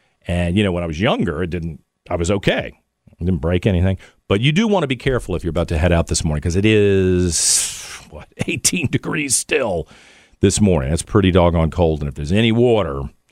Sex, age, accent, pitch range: male, 50-69, American, 90-130 Hz